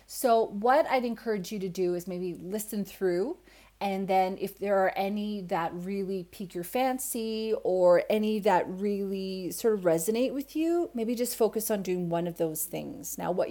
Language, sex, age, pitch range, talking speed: English, female, 30-49, 165-210 Hz, 185 wpm